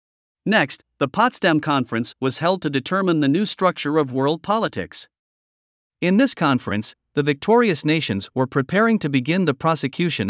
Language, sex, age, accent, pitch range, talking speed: English, male, 50-69, American, 130-170 Hz, 150 wpm